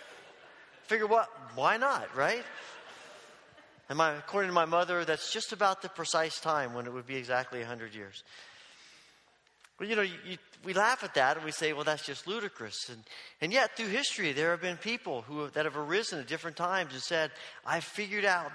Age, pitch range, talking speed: 40-59, 155-210 Hz, 200 wpm